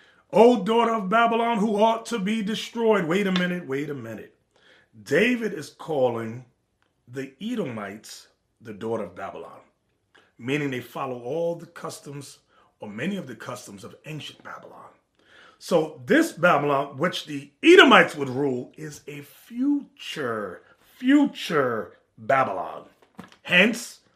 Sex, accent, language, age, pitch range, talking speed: male, American, English, 30-49, 140-220 Hz, 130 wpm